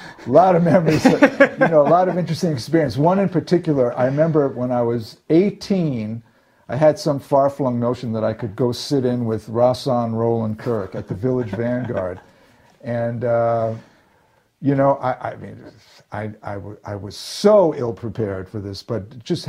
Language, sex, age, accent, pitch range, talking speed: English, male, 50-69, American, 115-145 Hz, 180 wpm